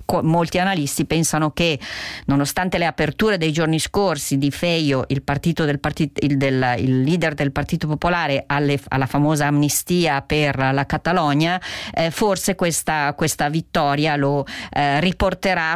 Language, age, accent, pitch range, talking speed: Italian, 40-59, native, 140-160 Hz, 145 wpm